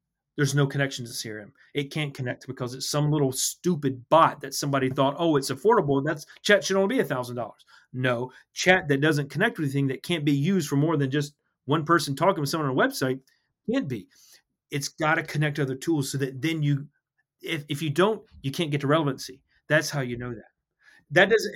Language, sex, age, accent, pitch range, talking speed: English, male, 30-49, American, 135-175 Hz, 215 wpm